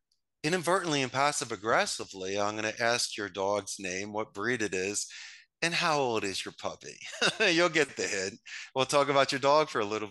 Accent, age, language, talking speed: American, 30-49, English, 195 wpm